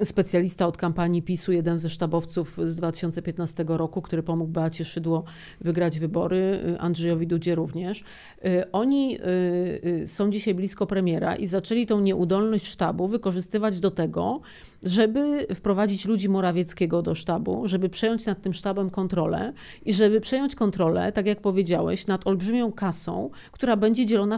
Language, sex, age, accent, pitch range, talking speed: Polish, female, 40-59, native, 175-210 Hz, 140 wpm